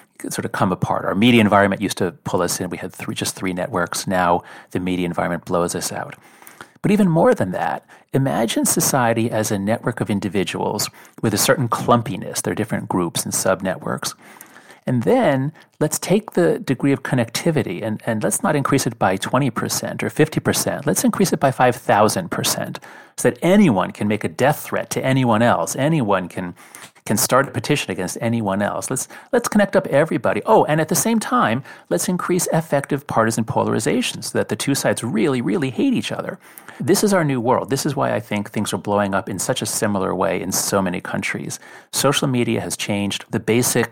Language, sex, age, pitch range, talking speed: English, male, 40-59, 100-145 Hz, 200 wpm